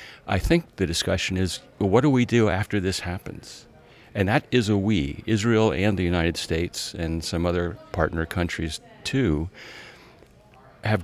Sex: male